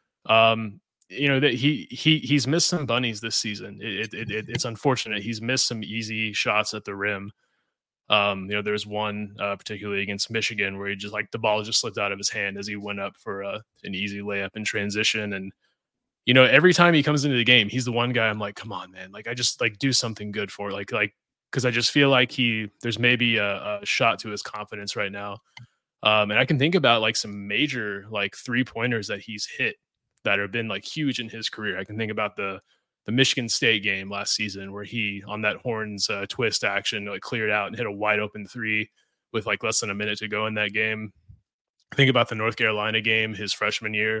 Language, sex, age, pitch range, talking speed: English, male, 20-39, 105-120 Hz, 235 wpm